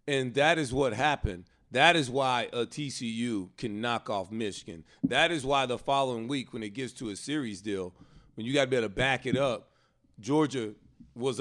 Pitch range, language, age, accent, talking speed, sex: 120-160 Hz, English, 40-59, American, 205 wpm, male